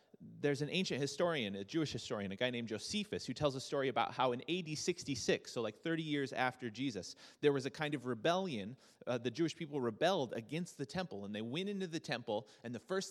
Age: 30-49